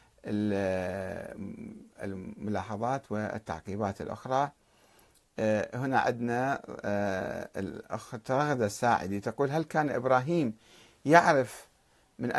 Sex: male